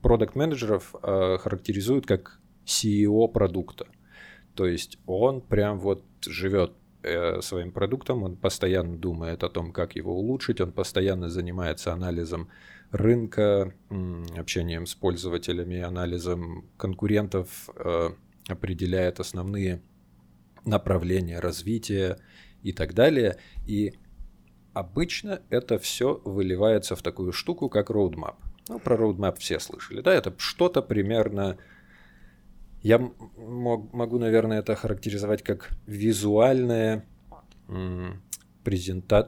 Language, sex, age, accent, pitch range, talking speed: Russian, male, 20-39, native, 90-110 Hz, 110 wpm